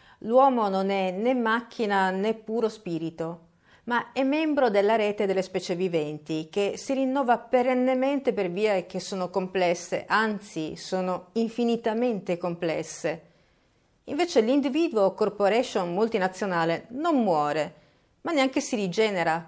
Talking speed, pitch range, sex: 120 wpm, 170-235 Hz, female